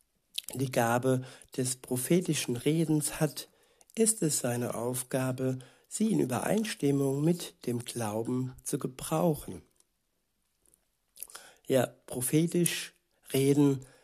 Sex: male